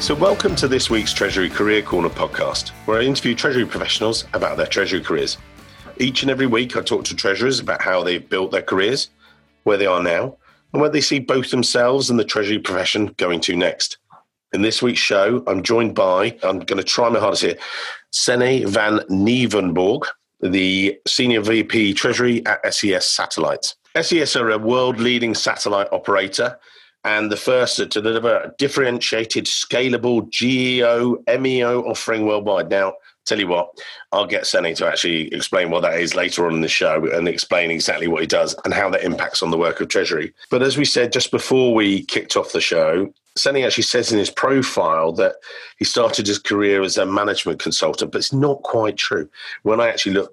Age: 40-59